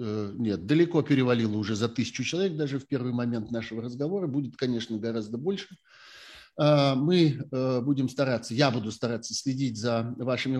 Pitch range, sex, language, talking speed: 115-140 Hz, male, Russian, 145 wpm